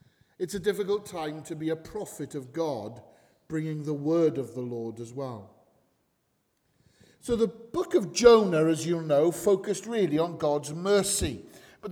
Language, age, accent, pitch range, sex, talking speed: English, 50-69, British, 145-195 Hz, male, 160 wpm